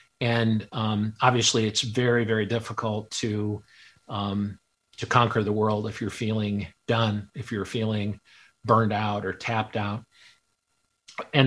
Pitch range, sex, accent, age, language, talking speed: 105-120 Hz, male, American, 50-69, English, 135 wpm